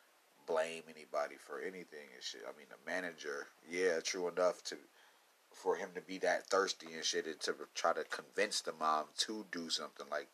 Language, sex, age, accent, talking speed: English, male, 30-49, American, 190 wpm